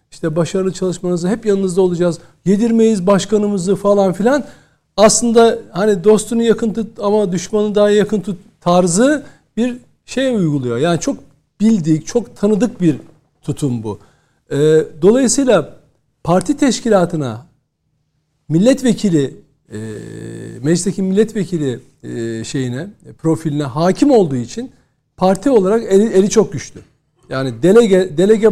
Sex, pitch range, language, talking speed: male, 155-210 Hz, Turkish, 110 wpm